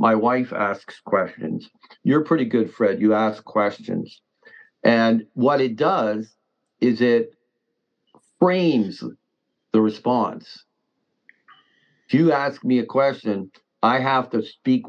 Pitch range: 110-130 Hz